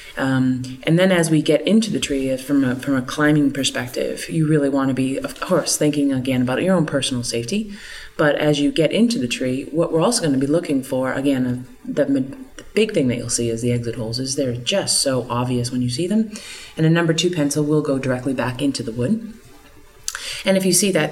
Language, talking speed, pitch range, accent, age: English, 230 wpm, 135-170 Hz, American, 30-49